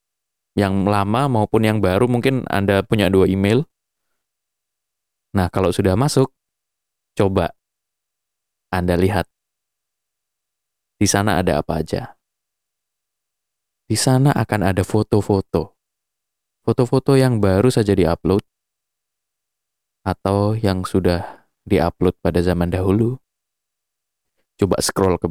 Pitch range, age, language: 95-125 Hz, 20-39, Indonesian